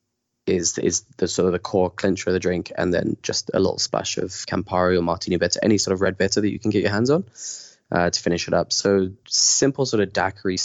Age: 20-39